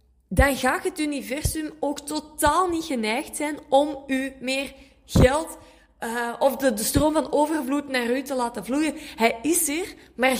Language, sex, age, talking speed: Dutch, female, 20-39, 165 wpm